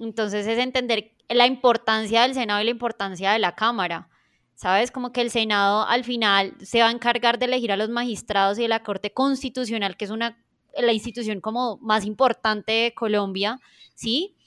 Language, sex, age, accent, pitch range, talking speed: Spanish, female, 20-39, Colombian, 195-245 Hz, 185 wpm